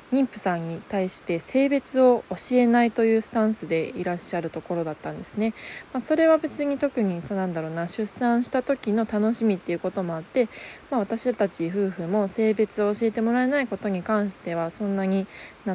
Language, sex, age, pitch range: Japanese, female, 20-39, 185-245 Hz